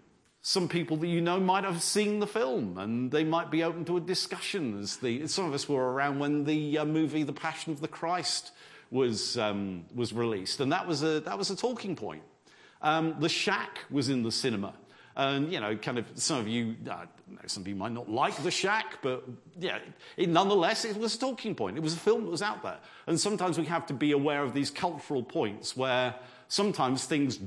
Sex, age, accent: male, 50-69, British